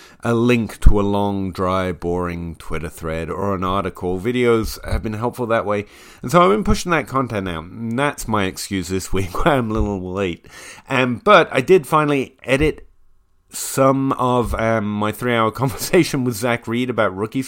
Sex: male